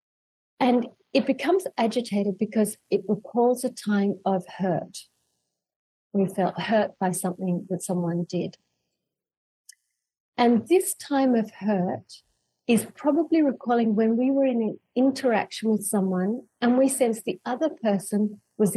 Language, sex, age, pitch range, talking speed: English, female, 40-59, 195-240 Hz, 135 wpm